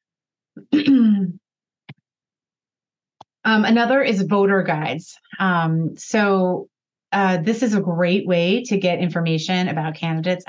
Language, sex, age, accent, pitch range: English, female, 30-49, American, 160-185 Hz